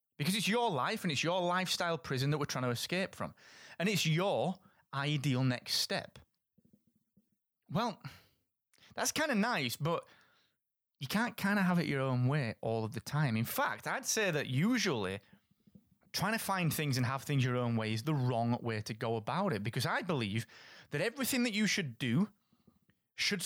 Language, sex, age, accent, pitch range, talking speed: English, male, 30-49, British, 120-180 Hz, 190 wpm